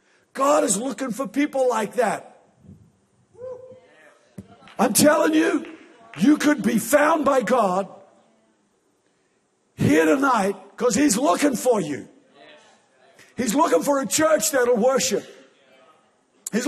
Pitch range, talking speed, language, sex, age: 240-290 Hz, 110 wpm, English, male, 50-69